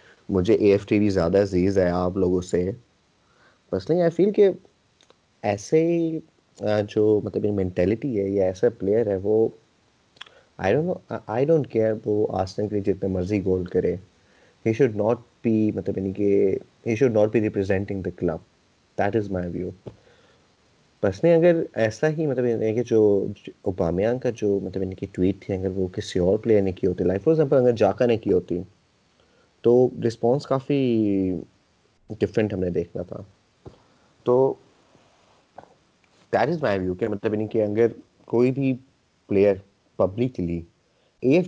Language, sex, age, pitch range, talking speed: Urdu, male, 30-49, 95-125 Hz, 150 wpm